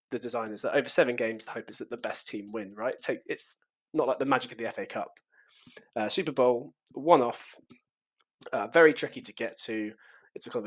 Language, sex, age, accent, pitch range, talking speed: English, male, 20-39, British, 110-140 Hz, 215 wpm